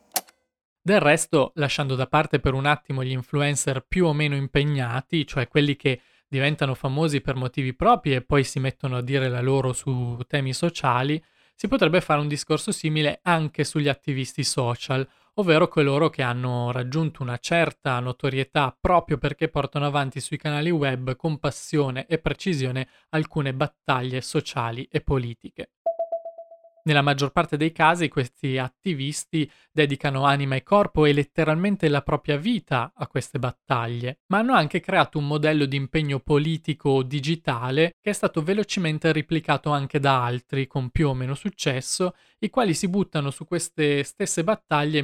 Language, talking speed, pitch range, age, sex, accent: Italian, 155 wpm, 135-160 Hz, 20-39, male, native